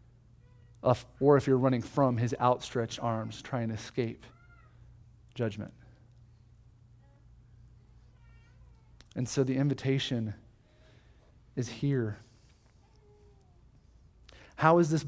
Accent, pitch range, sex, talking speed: American, 115-155 Hz, male, 85 wpm